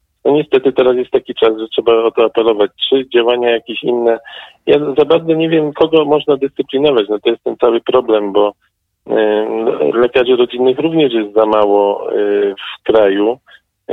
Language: Polish